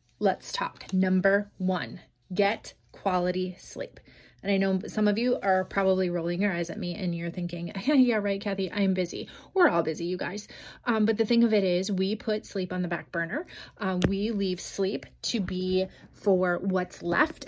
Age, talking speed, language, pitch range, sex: 30-49, 195 wpm, English, 185-210 Hz, female